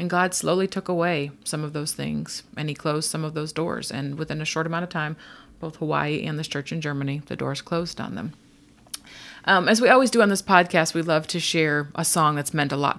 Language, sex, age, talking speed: English, female, 30-49, 245 wpm